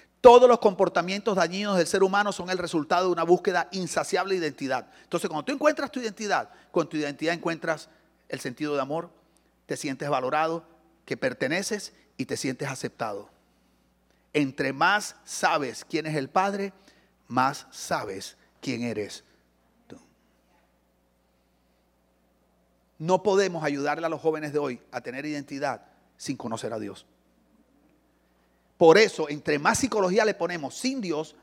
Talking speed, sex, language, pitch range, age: 145 wpm, male, English, 135-200 Hz, 40-59